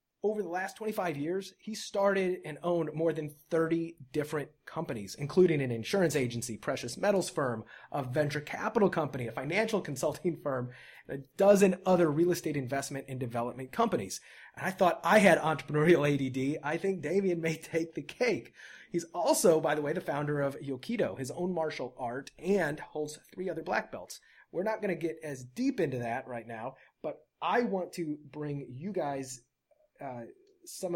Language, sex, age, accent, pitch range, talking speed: English, male, 30-49, American, 130-175 Hz, 180 wpm